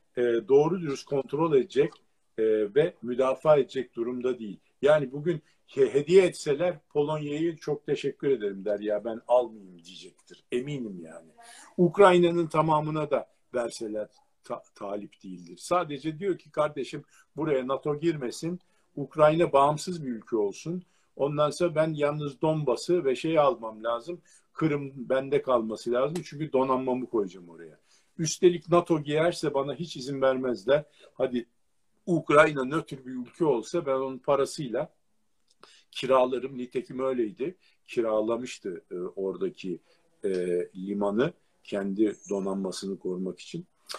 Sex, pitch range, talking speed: male, 125-180 Hz, 120 wpm